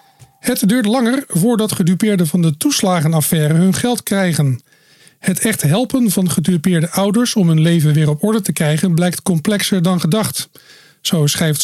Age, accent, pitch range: 50-69, Dutch, 165-210 Hz